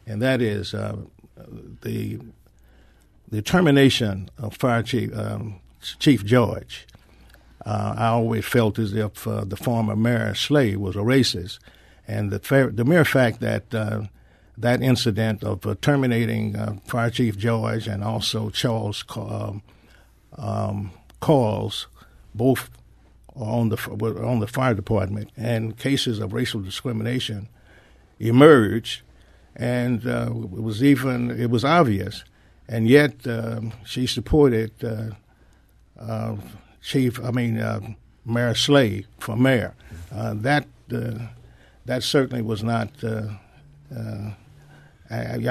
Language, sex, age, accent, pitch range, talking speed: English, male, 50-69, American, 105-125 Hz, 125 wpm